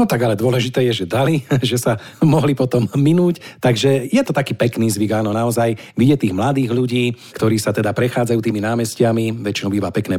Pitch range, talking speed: 110-135 Hz, 195 wpm